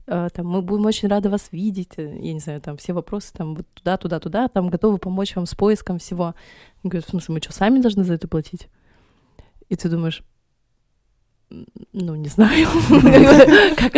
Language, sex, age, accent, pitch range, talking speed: Russian, female, 20-39, native, 175-210 Hz, 165 wpm